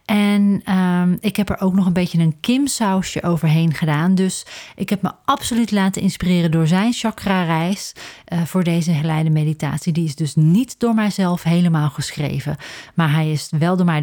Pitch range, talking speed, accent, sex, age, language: 155-195 Hz, 185 wpm, Dutch, female, 40-59, Dutch